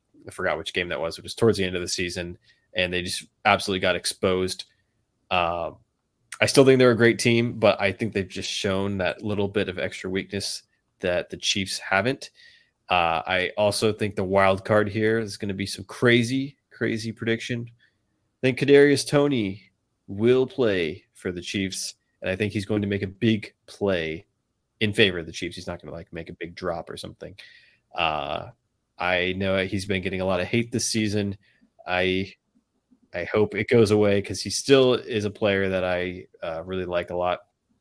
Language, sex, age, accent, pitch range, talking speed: English, male, 20-39, American, 90-110 Hz, 200 wpm